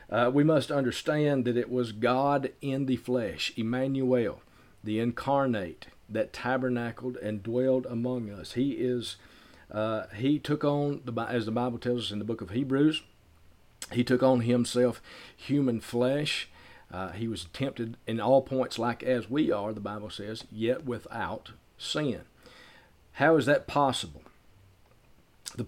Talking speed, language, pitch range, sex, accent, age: 150 wpm, English, 110-135 Hz, male, American, 40-59